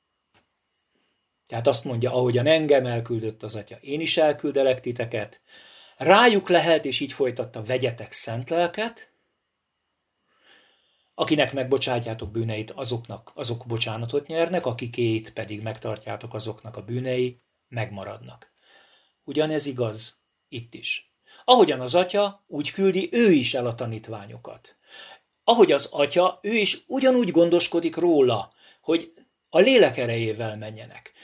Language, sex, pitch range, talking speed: Hungarian, male, 115-170 Hz, 120 wpm